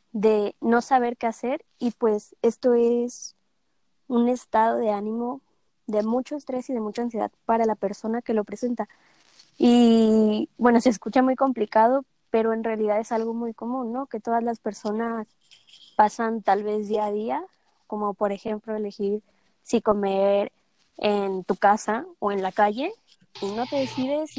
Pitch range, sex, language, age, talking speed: 215-245 Hz, female, Spanish, 20-39, 165 wpm